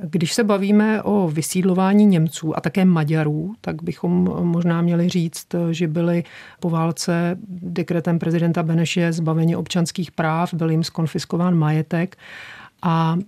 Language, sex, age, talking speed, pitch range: Czech, male, 40-59, 130 wpm, 165-185 Hz